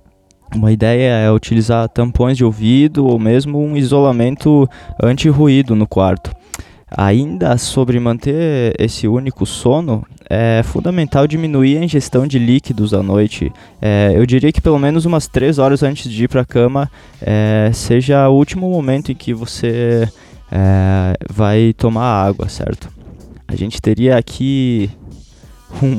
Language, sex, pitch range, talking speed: Portuguese, male, 105-130 Hz, 135 wpm